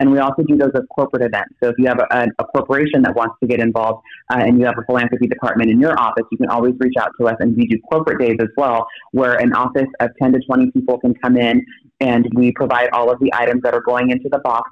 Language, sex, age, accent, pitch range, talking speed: English, female, 30-49, American, 120-135 Hz, 275 wpm